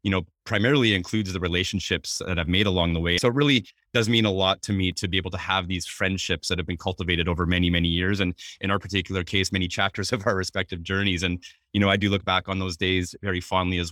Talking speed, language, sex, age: 260 wpm, English, male, 30-49